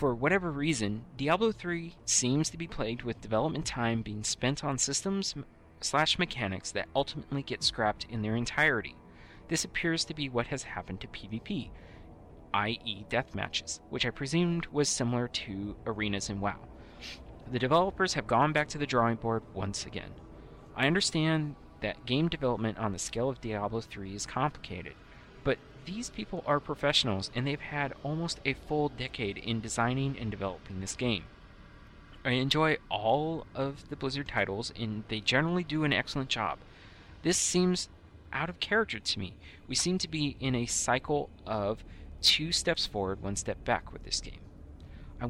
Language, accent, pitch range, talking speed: English, American, 105-145 Hz, 165 wpm